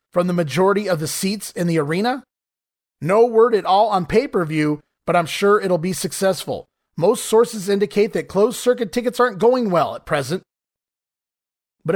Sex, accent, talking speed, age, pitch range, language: male, American, 165 wpm, 30-49, 165-215 Hz, English